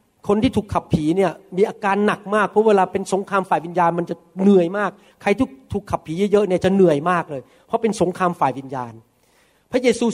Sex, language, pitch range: male, Thai, 180-245 Hz